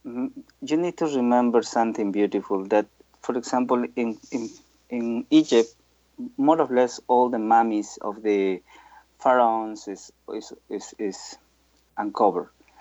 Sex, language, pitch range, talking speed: male, English, 105-140 Hz, 125 wpm